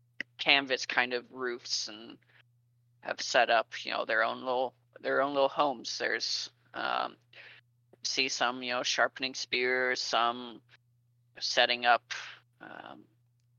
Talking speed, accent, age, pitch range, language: 130 wpm, American, 30-49, 120-135 Hz, English